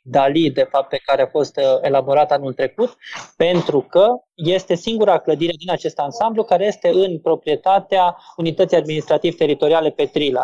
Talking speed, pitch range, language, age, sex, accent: 145 wpm, 150-190 Hz, Romanian, 20-39, male, native